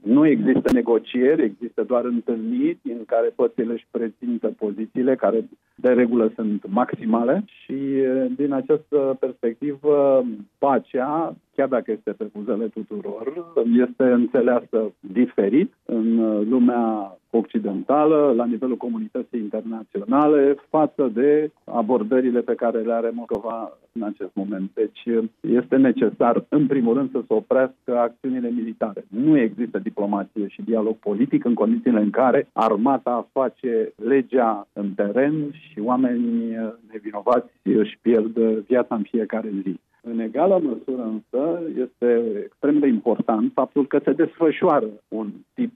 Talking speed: 125 wpm